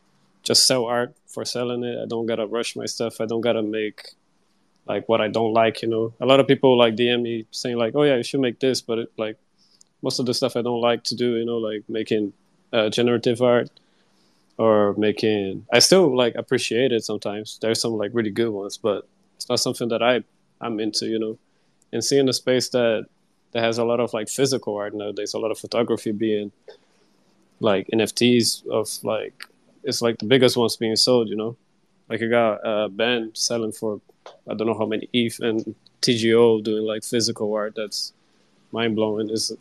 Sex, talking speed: male, 205 wpm